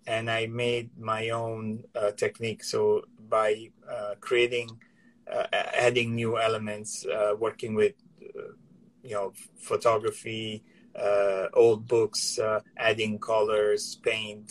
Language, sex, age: English, male, 30-49